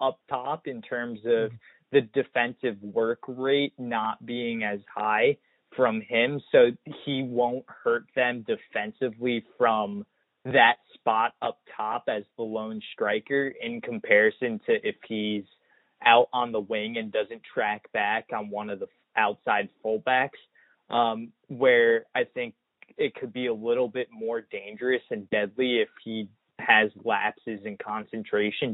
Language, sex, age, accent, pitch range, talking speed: English, male, 20-39, American, 110-140 Hz, 145 wpm